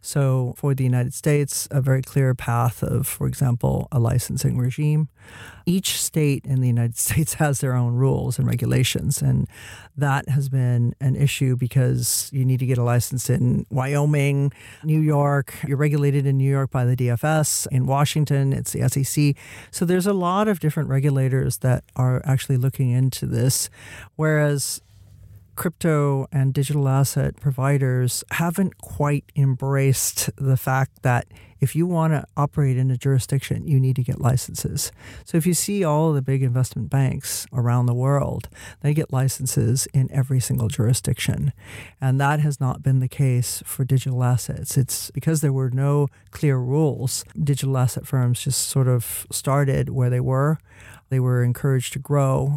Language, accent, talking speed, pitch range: English, American, 165 wpm, 125-145 Hz